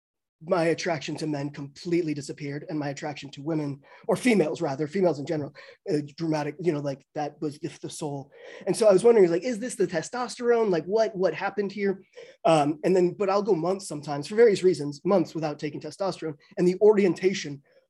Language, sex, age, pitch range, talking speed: English, male, 20-39, 155-190 Hz, 200 wpm